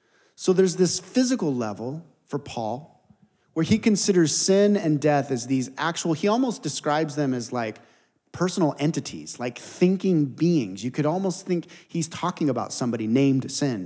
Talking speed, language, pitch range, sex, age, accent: 160 wpm, English, 125-165 Hz, male, 30-49, American